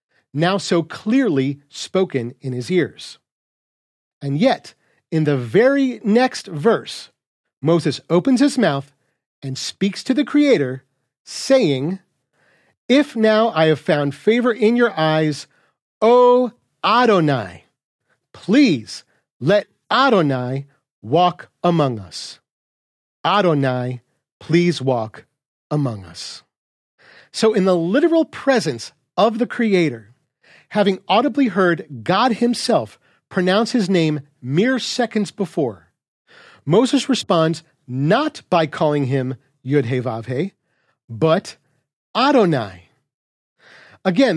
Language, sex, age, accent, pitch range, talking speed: English, male, 40-59, American, 140-220 Hz, 100 wpm